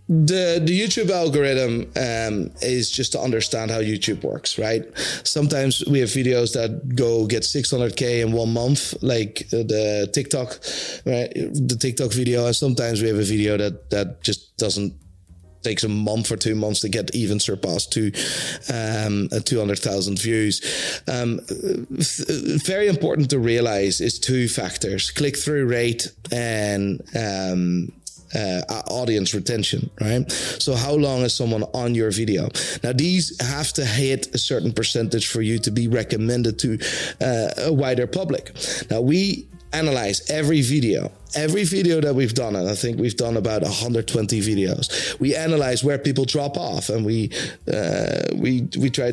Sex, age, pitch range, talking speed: male, 30-49, 110-140 Hz, 160 wpm